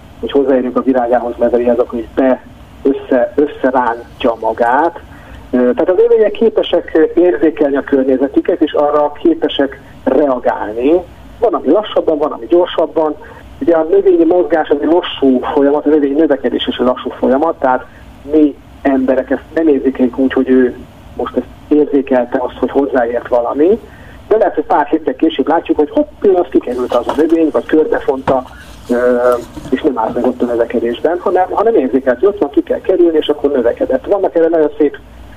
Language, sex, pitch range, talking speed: Hungarian, male, 125-155 Hz, 165 wpm